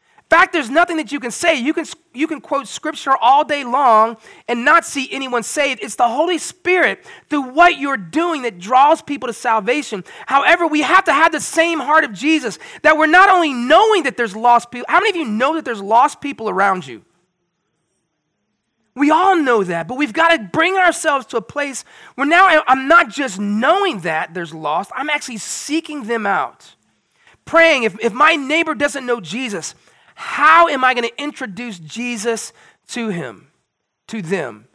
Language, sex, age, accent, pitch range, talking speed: English, male, 30-49, American, 200-310 Hz, 190 wpm